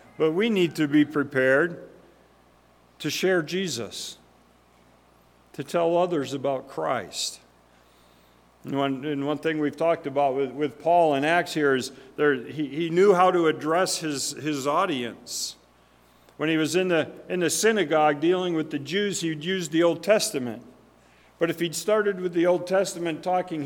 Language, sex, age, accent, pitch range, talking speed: English, male, 50-69, American, 135-175 Hz, 165 wpm